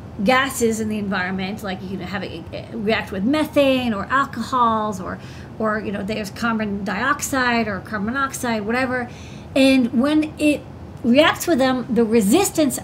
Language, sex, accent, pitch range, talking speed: English, female, American, 220-280 Hz, 155 wpm